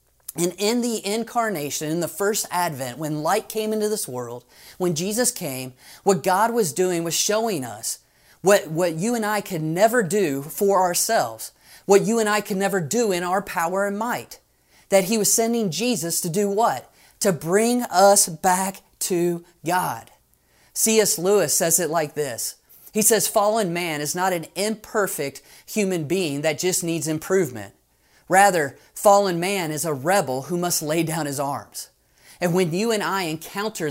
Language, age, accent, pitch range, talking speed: English, 30-49, American, 160-210 Hz, 175 wpm